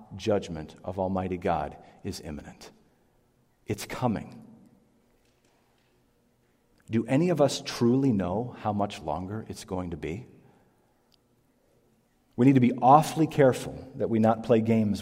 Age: 40-59